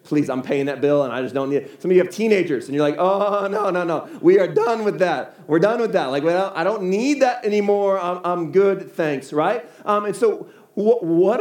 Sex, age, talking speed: male, 40-59, 250 wpm